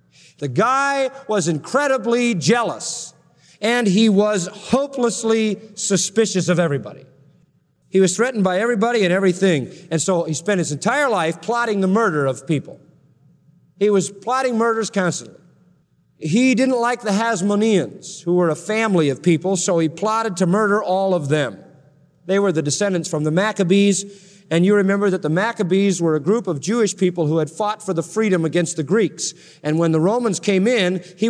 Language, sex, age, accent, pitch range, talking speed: English, male, 40-59, American, 165-215 Hz, 175 wpm